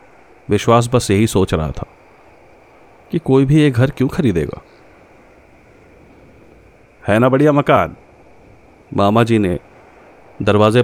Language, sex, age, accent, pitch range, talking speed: Hindi, male, 30-49, native, 95-115 Hz, 115 wpm